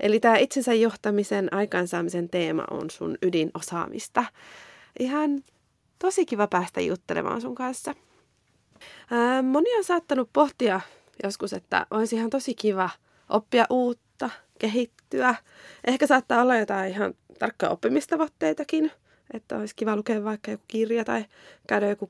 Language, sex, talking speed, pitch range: Finnish, female, 130 wpm, 200-265 Hz